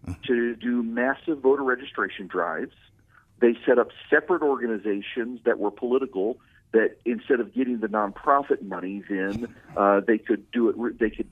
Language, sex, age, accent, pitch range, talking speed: English, male, 50-69, American, 110-140 Hz, 155 wpm